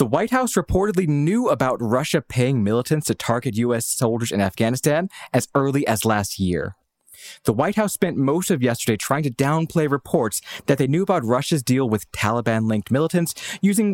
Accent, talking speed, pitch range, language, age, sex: American, 175 wpm, 115-170 Hz, English, 20-39, male